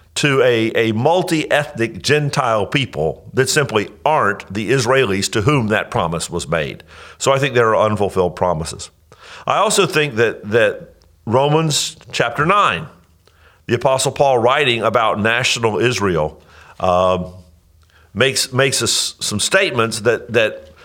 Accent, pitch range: American, 100-140 Hz